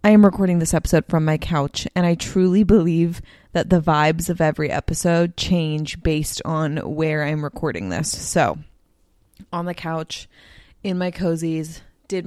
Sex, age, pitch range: female, 20-39, 155-185 Hz